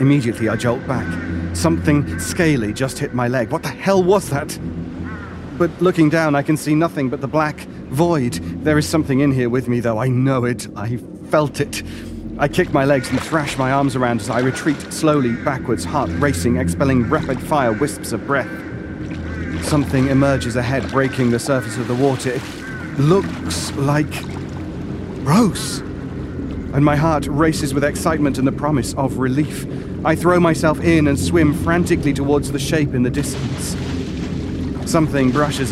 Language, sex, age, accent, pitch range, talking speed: English, male, 40-59, British, 115-145 Hz, 170 wpm